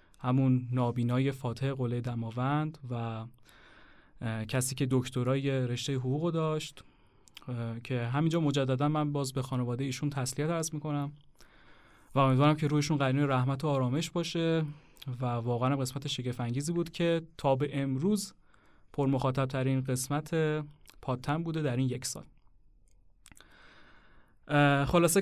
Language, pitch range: Persian, 125-155 Hz